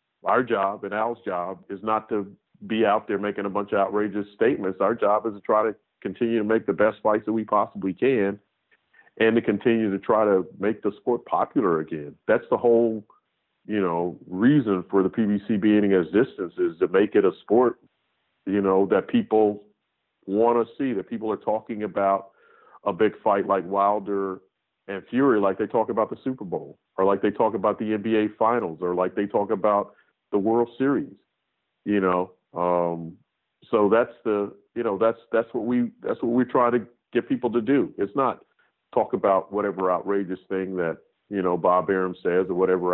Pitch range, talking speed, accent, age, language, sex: 95-110 Hz, 195 wpm, American, 40-59, English, male